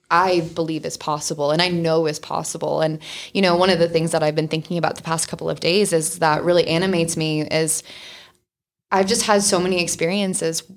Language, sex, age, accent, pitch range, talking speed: English, female, 20-39, American, 160-195 Hz, 210 wpm